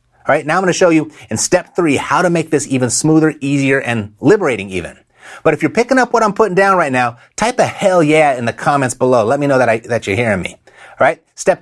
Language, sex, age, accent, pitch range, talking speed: English, male, 30-49, American, 120-160 Hz, 260 wpm